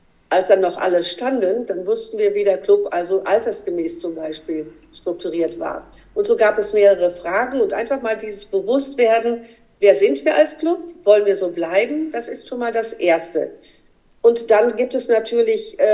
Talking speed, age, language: 180 wpm, 50-69, German